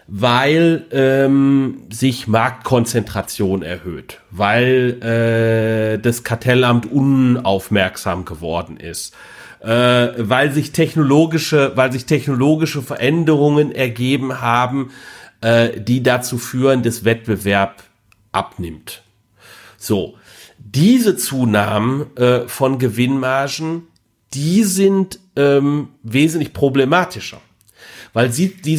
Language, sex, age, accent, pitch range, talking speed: German, male, 40-59, German, 115-150 Hz, 90 wpm